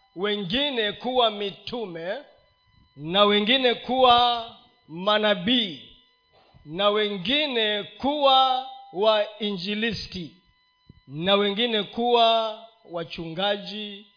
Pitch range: 190-275 Hz